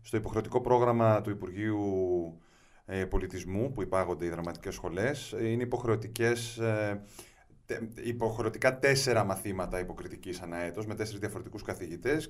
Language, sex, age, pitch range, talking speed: Greek, male, 30-49, 95-115 Hz, 120 wpm